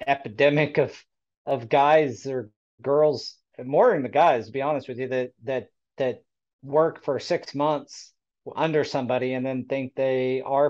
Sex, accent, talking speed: male, American, 165 wpm